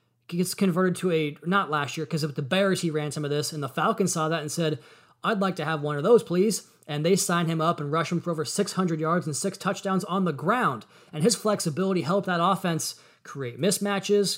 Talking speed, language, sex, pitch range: 240 wpm, English, male, 150-185 Hz